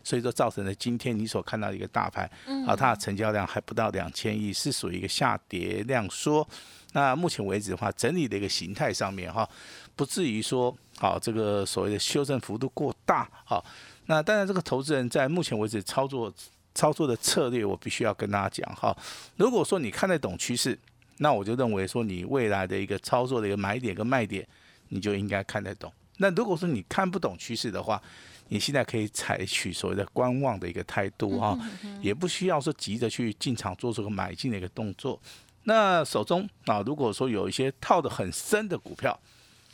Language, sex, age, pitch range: Chinese, male, 50-69, 100-135 Hz